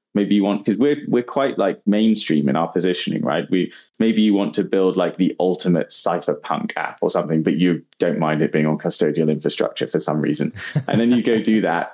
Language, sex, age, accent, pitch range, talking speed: English, male, 20-39, British, 95-115 Hz, 220 wpm